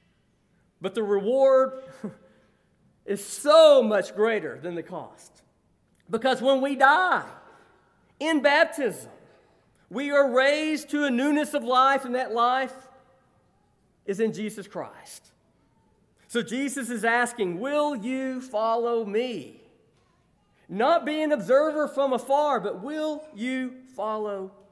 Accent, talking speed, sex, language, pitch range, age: American, 120 wpm, male, English, 225-280 Hz, 40-59